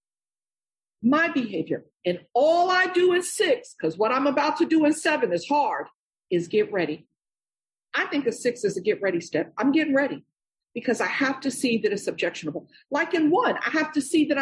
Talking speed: 205 wpm